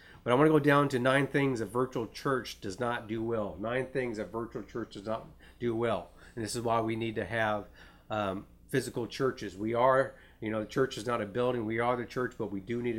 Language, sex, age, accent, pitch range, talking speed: English, male, 50-69, American, 105-125 Hz, 250 wpm